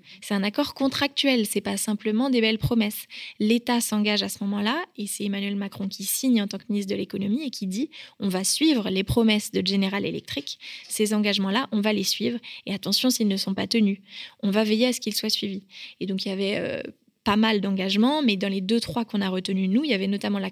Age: 20-39